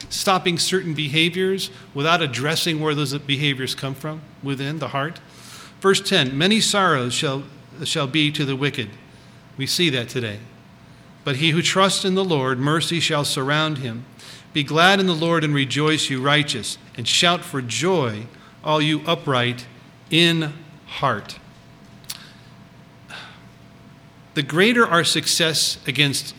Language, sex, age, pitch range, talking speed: English, male, 50-69, 135-170 Hz, 140 wpm